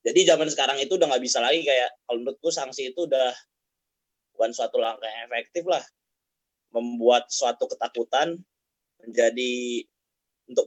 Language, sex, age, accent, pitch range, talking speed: English, male, 20-39, Indonesian, 125-175 Hz, 140 wpm